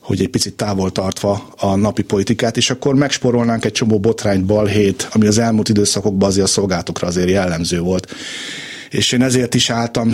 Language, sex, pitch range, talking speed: Hungarian, male, 100-120 Hz, 180 wpm